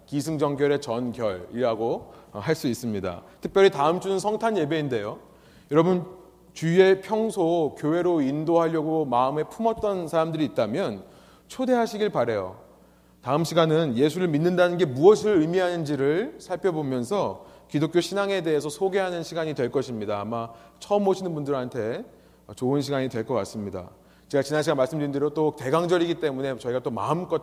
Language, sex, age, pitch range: Korean, male, 30-49, 125-185 Hz